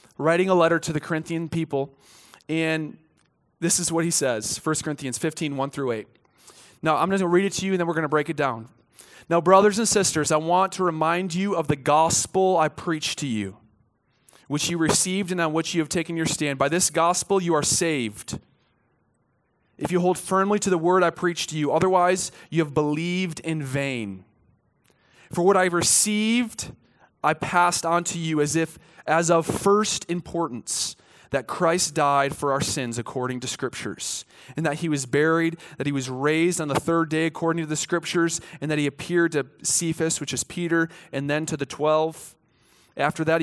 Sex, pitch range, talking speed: male, 145-170 Hz, 200 wpm